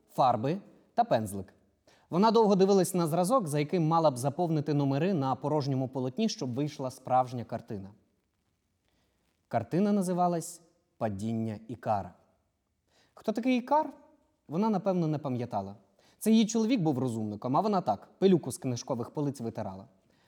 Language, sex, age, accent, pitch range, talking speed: Ukrainian, male, 20-39, native, 110-180 Hz, 135 wpm